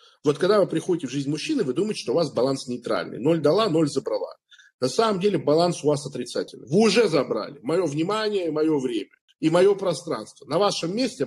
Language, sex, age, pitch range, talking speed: Russian, male, 40-59, 140-205 Hz, 200 wpm